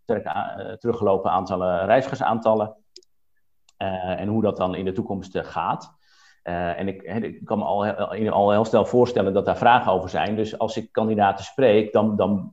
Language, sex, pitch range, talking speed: Dutch, male, 100-115 Hz, 175 wpm